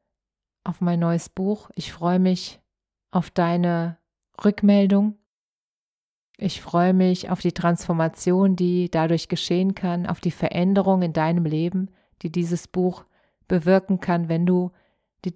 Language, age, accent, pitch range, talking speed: German, 30-49, German, 160-180 Hz, 135 wpm